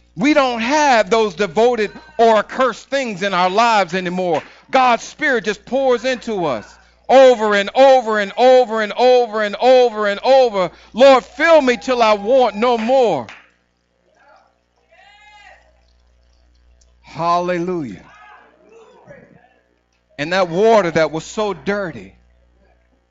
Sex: male